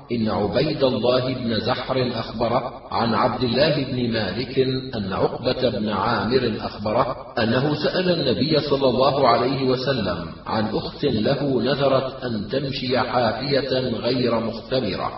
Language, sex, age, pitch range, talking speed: Arabic, male, 40-59, 115-130 Hz, 125 wpm